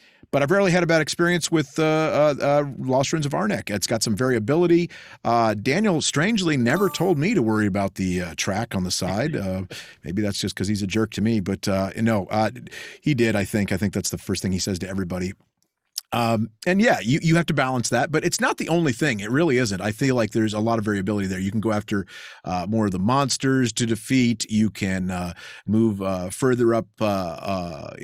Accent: American